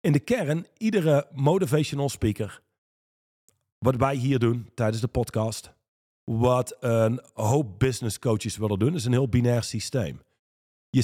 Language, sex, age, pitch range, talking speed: Dutch, male, 40-59, 110-150 Hz, 135 wpm